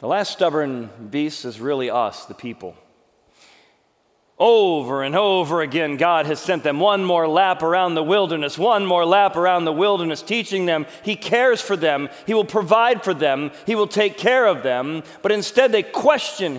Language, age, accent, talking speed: English, 40-59, American, 180 wpm